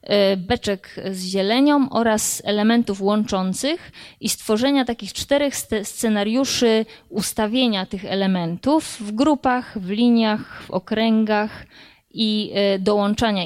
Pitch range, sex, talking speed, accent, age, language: 195-230 Hz, female, 100 wpm, native, 20-39, Polish